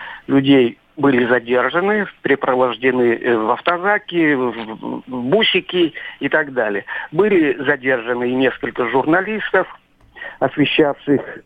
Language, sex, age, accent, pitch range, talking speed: Russian, male, 50-69, native, 135-180 Hz, 90 wpm